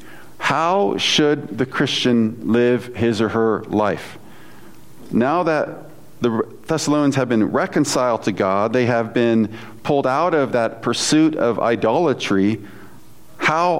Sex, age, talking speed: male, 40-59, 125 wpm